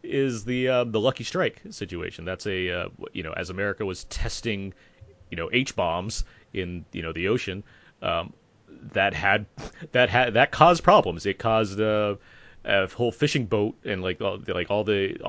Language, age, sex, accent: English, 30-49, male, American